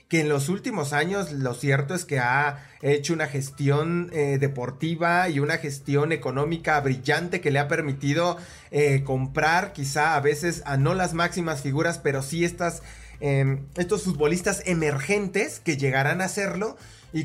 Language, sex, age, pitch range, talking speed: English, male, 20-39, 135-165 Hz, 155 wpm